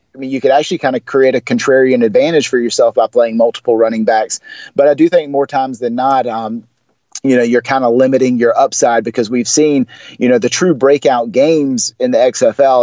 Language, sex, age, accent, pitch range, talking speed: English, male, 30-49, American, 115-145 Hz, 220 wpm